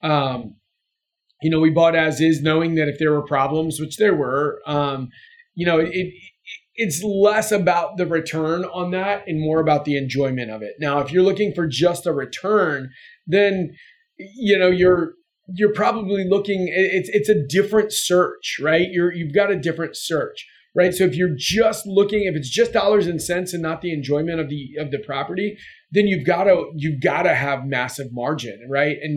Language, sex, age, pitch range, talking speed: English, male, 30-49, 145-185 Hz, 195 wpm